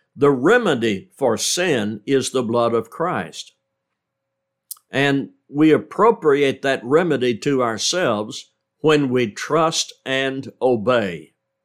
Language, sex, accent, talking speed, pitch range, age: English, male, American, 110 wpm, 120-155 Hz, 60-79